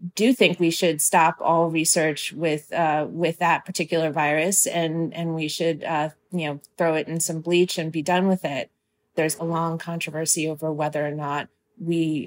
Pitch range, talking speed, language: 155-185 Hz, 190 wpm, English